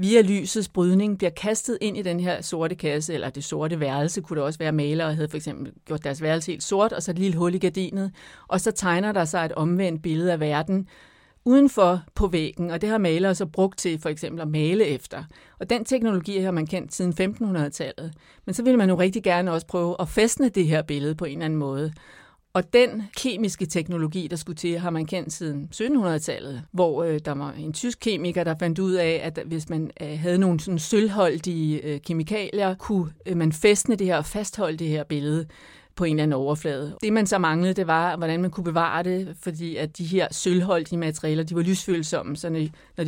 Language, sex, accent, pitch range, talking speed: Danish, female, native, 155-190 Hz, 215 wpm